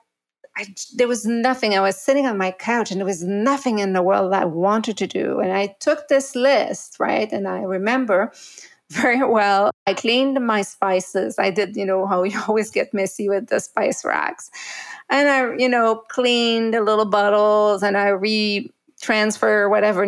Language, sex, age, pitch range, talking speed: English, female, 30-49, 195-230 Hz, 185 wpm